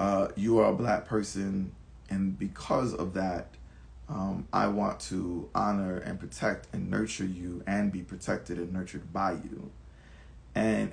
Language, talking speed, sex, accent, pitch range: English, 155 wpm, male, American, 85-105 Hz